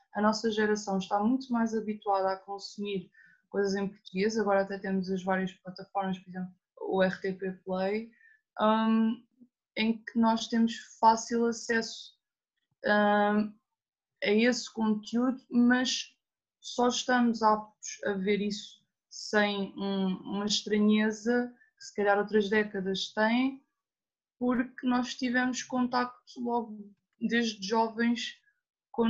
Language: Portuguese